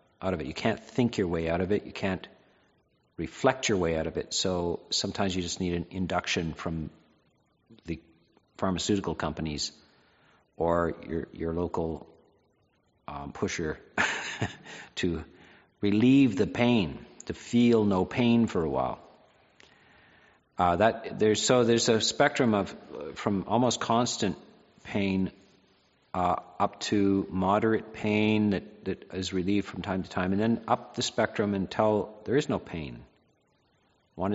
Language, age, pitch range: English, 50-69, 90-115 Hz